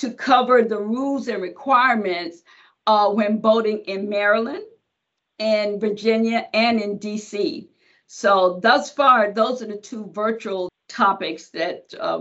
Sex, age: female, 50-69